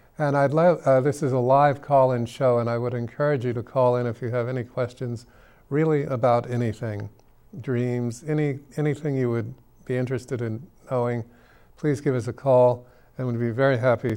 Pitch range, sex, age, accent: 115-130 Hz, male, 50-69, American